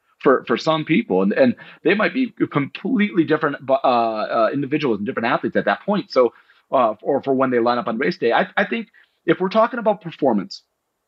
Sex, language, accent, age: male, English, American, 30-49